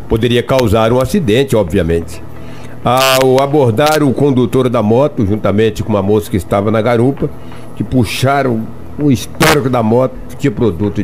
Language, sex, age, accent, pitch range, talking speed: Portuguese, male, 60-79, Brazilian, 100-125 Hz, 150 wpm